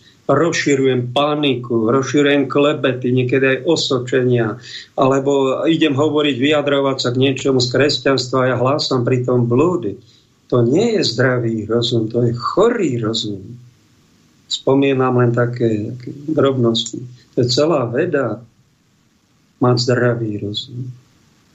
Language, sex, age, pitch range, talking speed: Slovak, male, 50-69, 120-140 Hz, 115 wpm